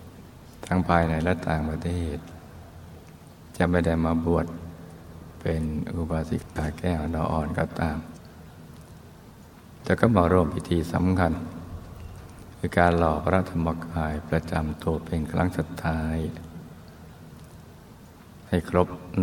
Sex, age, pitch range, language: male, 60-79, 80-95 Hz, Thai